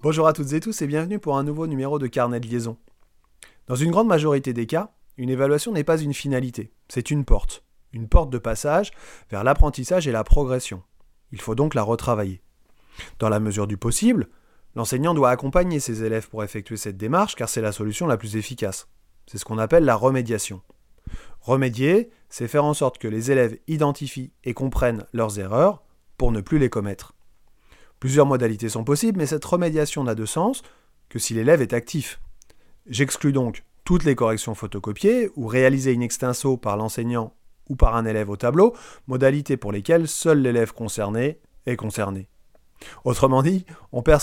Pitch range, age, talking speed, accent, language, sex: 110-145 Hz, 30-49, 180 wpm, French, French, male